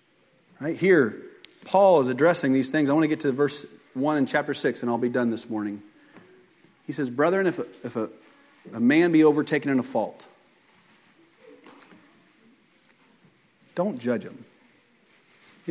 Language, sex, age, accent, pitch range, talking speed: English, male, 40-59, American, 120-165 Hz, 155 wpm